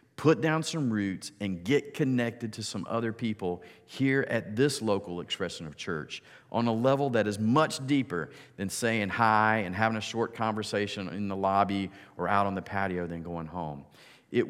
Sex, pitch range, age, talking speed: male, 95-125 Hz, 40-59, 185 wpm